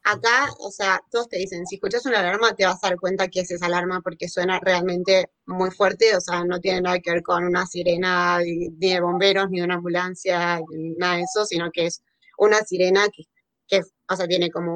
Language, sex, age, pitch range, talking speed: Spanish, female, 20-39, 175-205 Hz, 230 wpm